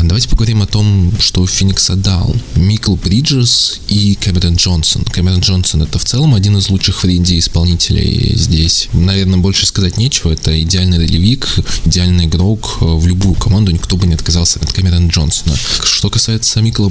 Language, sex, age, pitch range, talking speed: Russian, male, 20-39, 85-100 Hz, 165 wpm